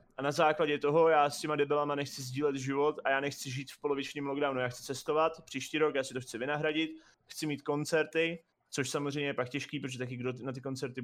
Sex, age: male, 30-49